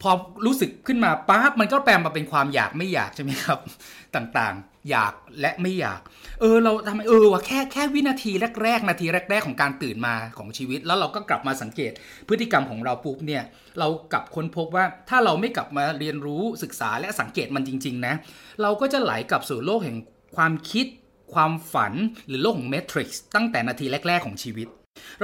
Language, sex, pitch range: Thai, male, 145-220 Hz